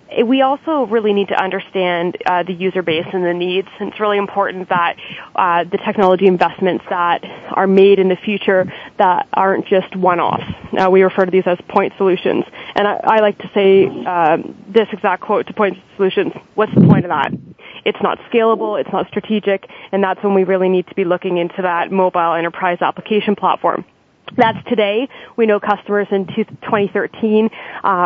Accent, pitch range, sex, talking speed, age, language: American, 185-210 Hz, female, 185 wpm, 20-39, English